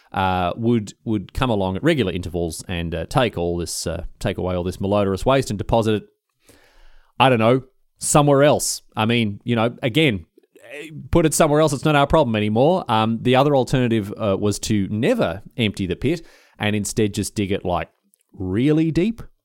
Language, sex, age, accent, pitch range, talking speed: English, male, 30-49, Australian, 100-130 Hz, 190 wpm